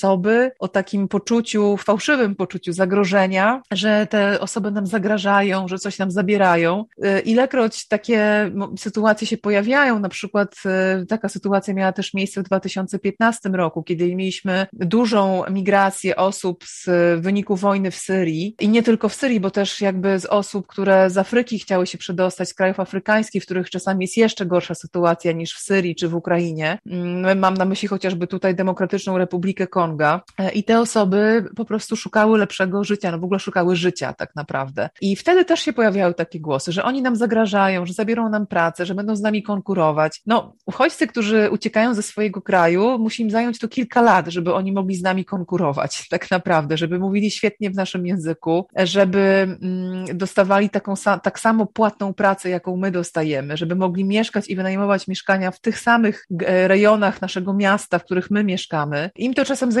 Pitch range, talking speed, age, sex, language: 185-210 Hz, 175 wpm, 30-49, female, Polish